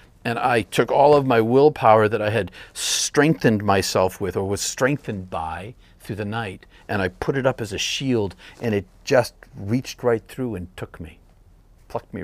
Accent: American